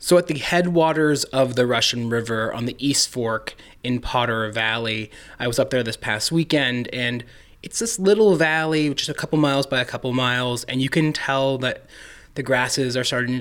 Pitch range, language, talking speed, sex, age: 120-140 Hz, English, 200 wpm, male, 20-39